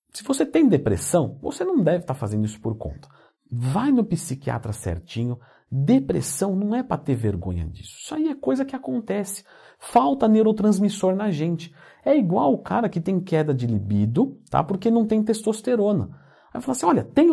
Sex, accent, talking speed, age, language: male, Brazilian, 185 wpm, 50-69, Portuguese